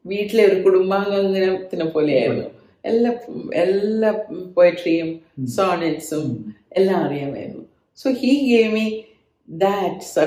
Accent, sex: native, female